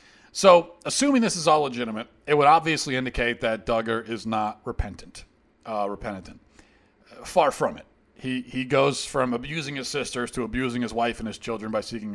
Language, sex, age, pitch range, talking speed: English, male, 40-59, 120-160 Hz, 180 wpm